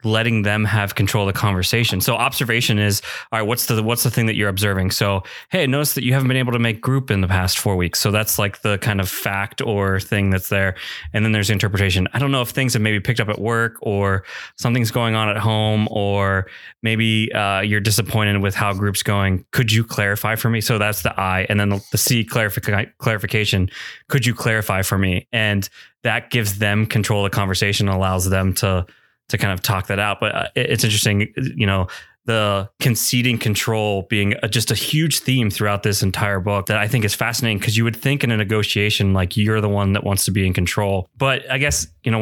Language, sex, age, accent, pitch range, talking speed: English, male, 20-39, American, 100-120 Hz, 225 wpm